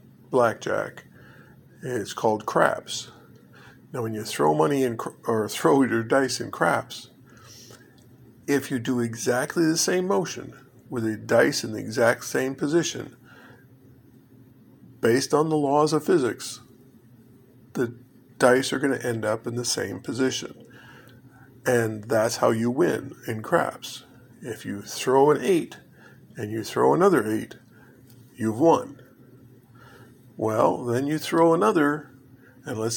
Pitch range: 120-130 Hz